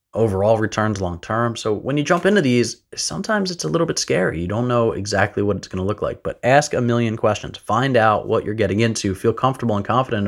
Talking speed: 240 wpm